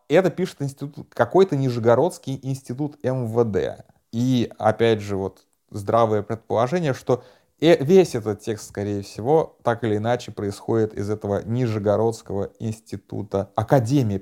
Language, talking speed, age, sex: Russian, 115 wpm, 30-49, male